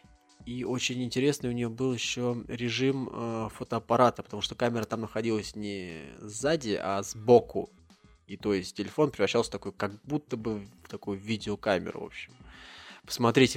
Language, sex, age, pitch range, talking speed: Russian, male, 20-39, 105-125 Hz, 150 wpm